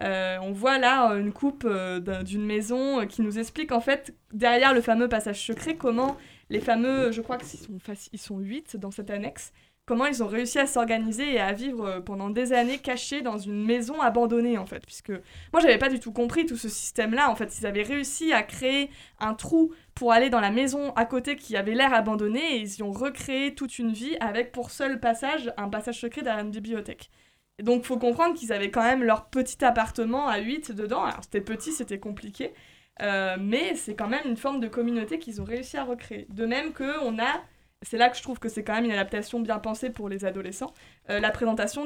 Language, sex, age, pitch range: French, female, 20-39, 215-260 Hz